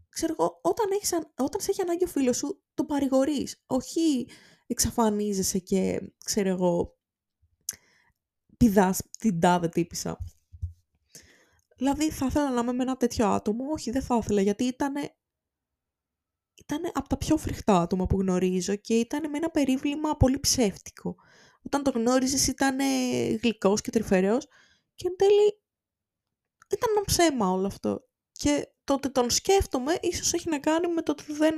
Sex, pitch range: female, 185-280 Hz